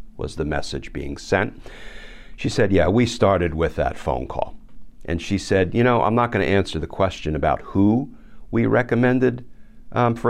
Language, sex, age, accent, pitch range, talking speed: English, male, 50-69, American, 85-120 Hz, 180 wpm